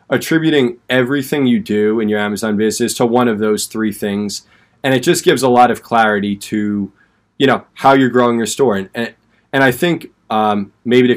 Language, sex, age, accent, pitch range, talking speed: English, male, 20-39, American, 100-120 Hz, 200 wpm